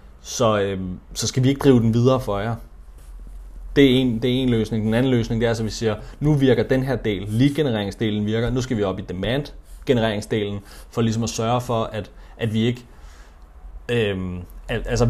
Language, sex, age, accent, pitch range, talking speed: Danish, male, 30-49, native, 105-130 Hz, 205 wpm